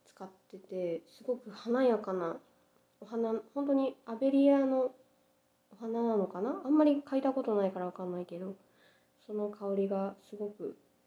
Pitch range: 190-265 Hz